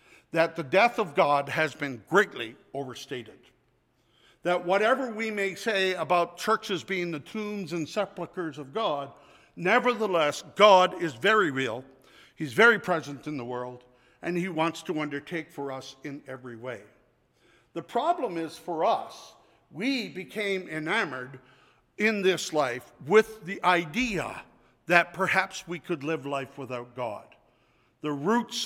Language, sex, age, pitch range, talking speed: English, male, 60-79, 145-190 Hz, 140 wpm